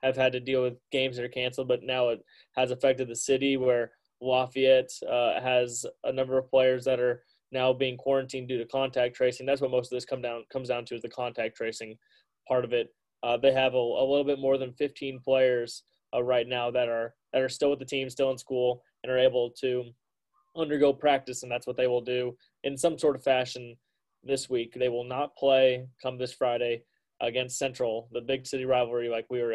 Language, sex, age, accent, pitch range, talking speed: English, male, 20-39, American, 120-135 Hz, 215 wpm